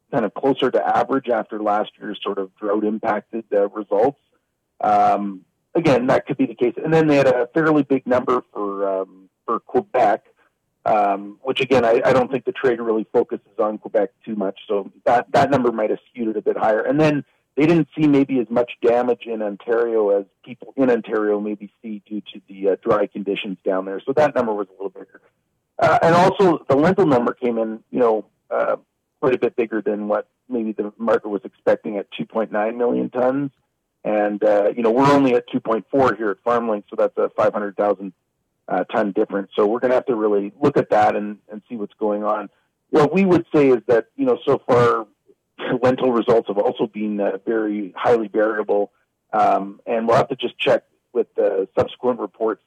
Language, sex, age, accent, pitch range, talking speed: English, male, 40-59, American, 105-125 Hz, 205 wpm